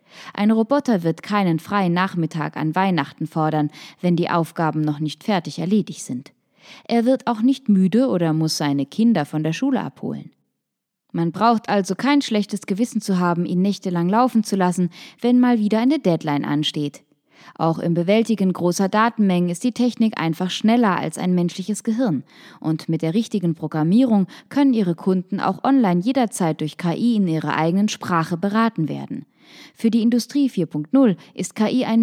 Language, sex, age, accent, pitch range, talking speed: German, female, 20-39, German, 165-220 Hz, 165 wpm